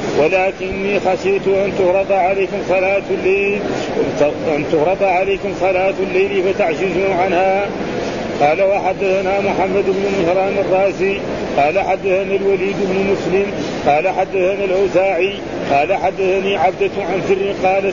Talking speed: 115 wpm